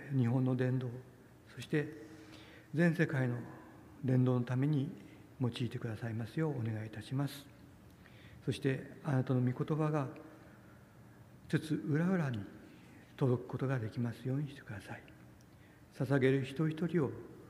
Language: Japanese